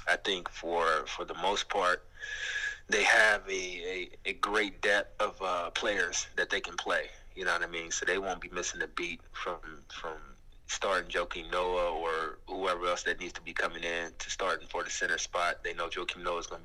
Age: 20-39